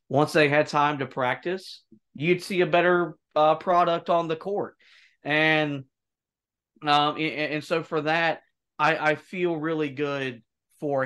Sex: male